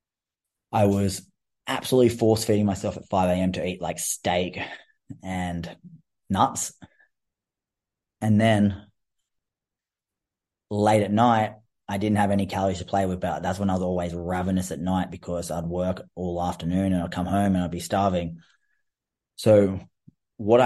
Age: 20-39